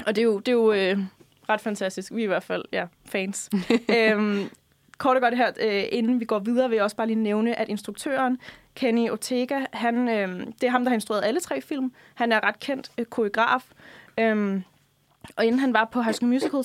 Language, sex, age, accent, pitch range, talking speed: Danish, female, 20-39, native, 200-235 Hz, 225 wpm